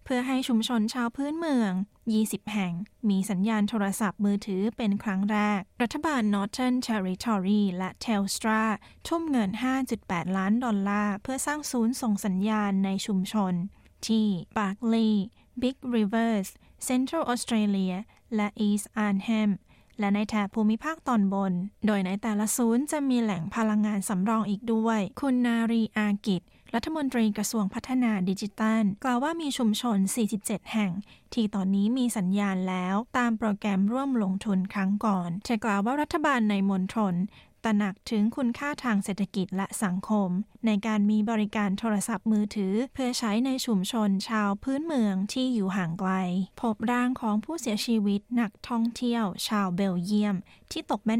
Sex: female